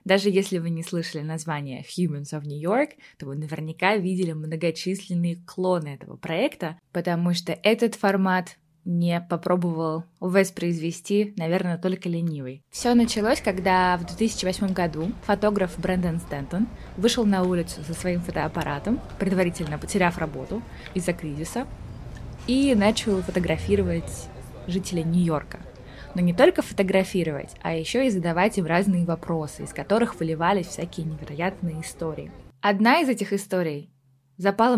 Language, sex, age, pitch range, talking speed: Russian, female, 20-39, 160-200 Hz, 130 wpm